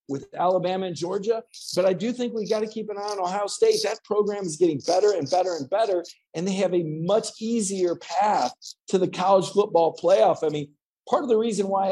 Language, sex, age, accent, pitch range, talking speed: English, male, 50-69, American, 155-215 Hz, 225 wpm